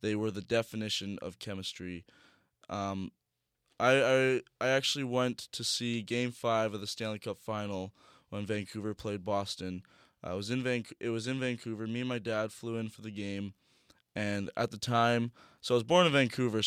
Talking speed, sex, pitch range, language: 185 wpm, male, 100-120 Hz, English